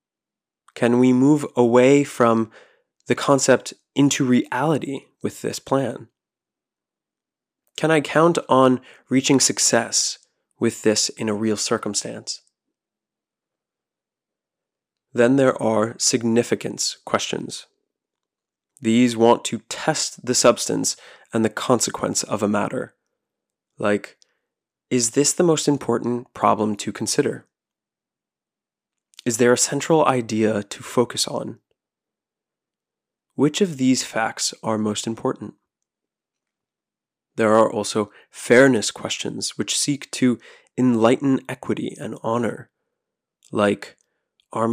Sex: male